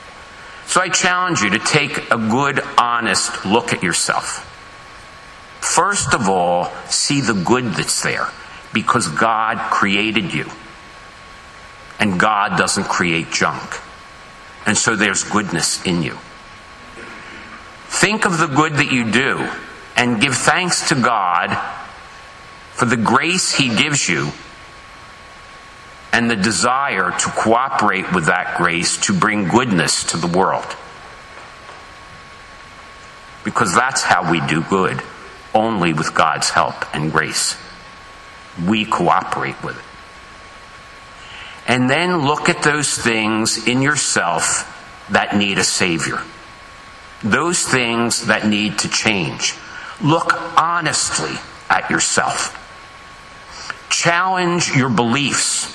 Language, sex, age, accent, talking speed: English, male, 50-69, American, 115 wpm